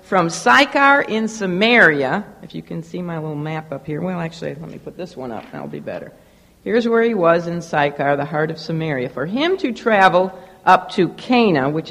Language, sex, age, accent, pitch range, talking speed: English, female, 60-79, American, 155-205 Hz, 210 wpm